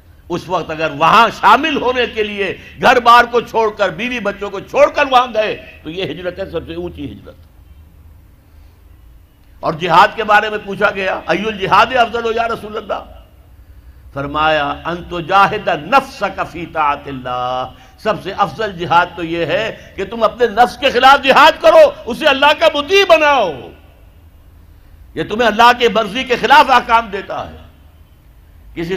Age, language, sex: 60-79, Urdu, male